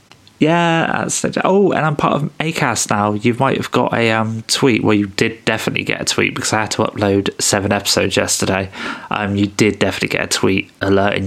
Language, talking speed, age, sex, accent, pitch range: English, 220 wpm, 20-39, male, British, 100-135 Hz